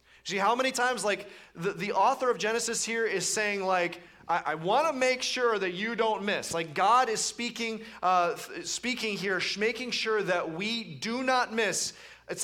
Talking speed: 180 wpm